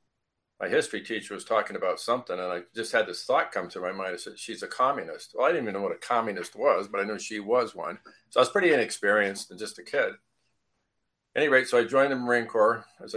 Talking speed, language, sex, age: 250 wpm, English, male, 50-69